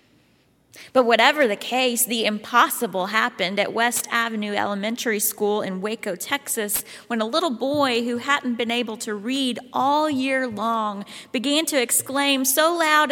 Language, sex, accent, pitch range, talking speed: English, female, American, 215-270 Hz, 150 wpm